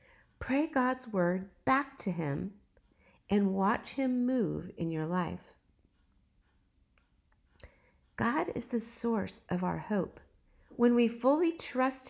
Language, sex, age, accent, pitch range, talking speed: English, female, 50-69, American, 190-260 Hz, 120 wpm